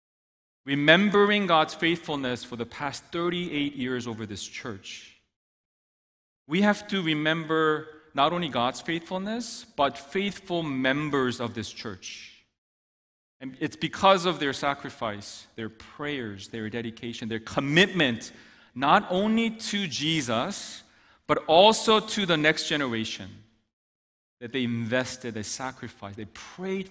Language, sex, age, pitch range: Korean, male, 40-59, 115-175 Hz